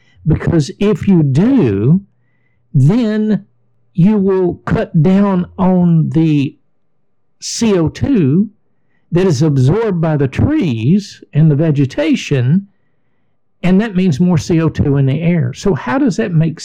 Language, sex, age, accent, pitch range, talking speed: English, male, 60-79, American, 145-200 Hz, 125 wpm